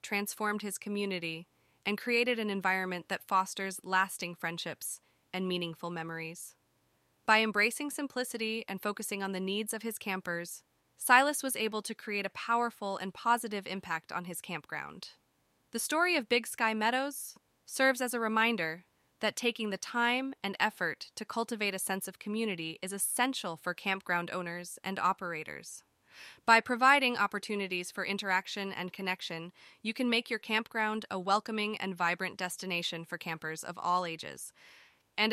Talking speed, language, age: 155 wpm, English, 20-39